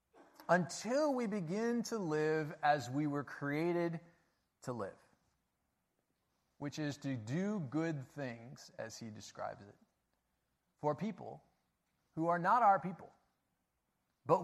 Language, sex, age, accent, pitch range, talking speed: English, male, 30-49, American, 115-170 Hz, 120 wpm